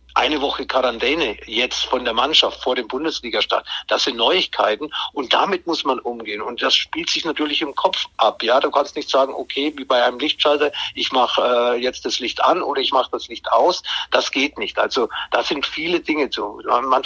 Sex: male